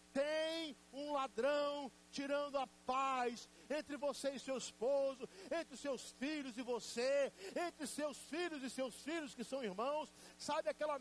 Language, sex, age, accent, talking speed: Portuguese, male, 60-79, Brazilian, 145 wpm